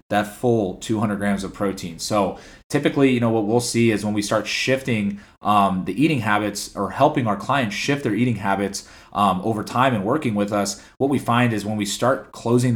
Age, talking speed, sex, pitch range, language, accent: 30-49, 210 wpm, male, 100-115 Hz, English, American